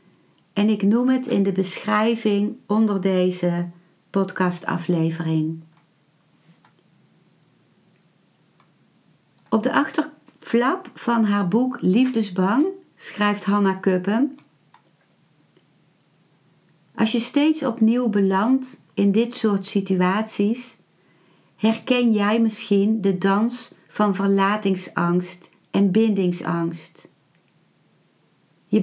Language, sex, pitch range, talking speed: Dutch, female, 175-225 Hz, 80 wpm